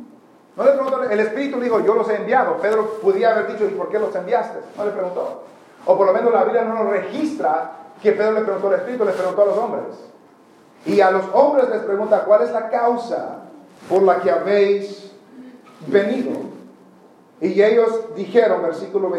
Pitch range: 165-225 Hz